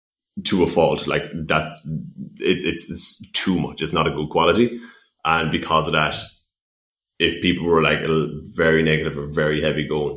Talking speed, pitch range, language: 165 wpm, 75-85 Hz, English